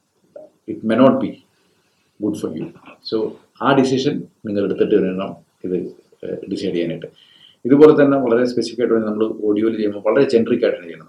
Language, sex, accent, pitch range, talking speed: Malayalam, male, native, 105-120 Hz, 160 wpm